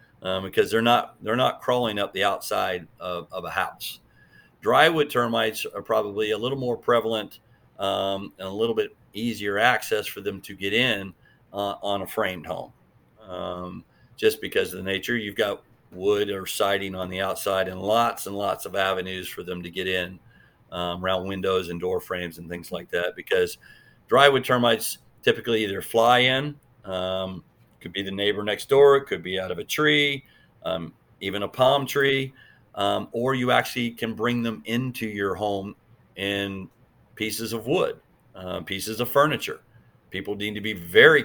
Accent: American